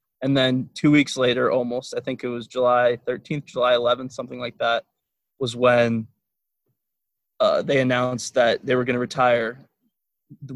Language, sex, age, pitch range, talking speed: English, male, 20-39, 120-135 Hz, 165 wpm